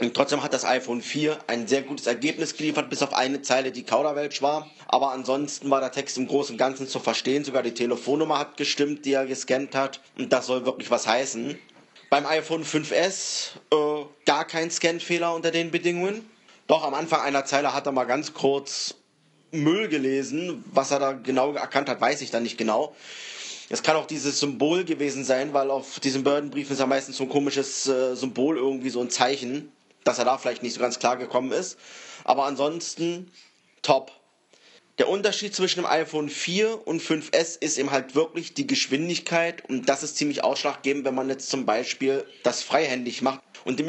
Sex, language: male, German